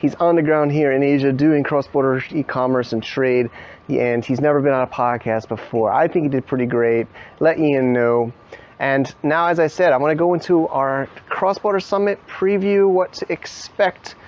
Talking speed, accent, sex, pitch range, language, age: 195 wpm, American, male, 135-185 Hz, English, 30-49